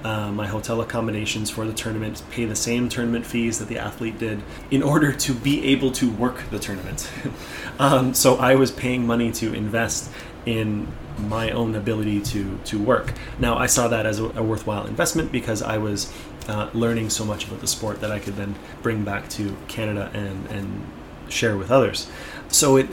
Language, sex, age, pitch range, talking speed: English, male, 20-39, 105-120 Hz, 195 wpm